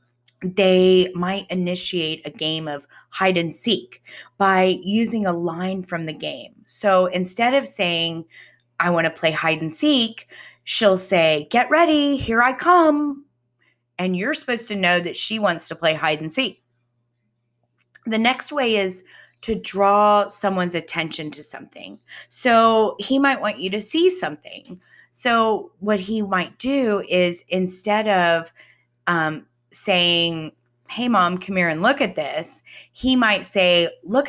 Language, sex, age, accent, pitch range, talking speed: English, female, 30-49, American, 160-220 Hz, 140 wpm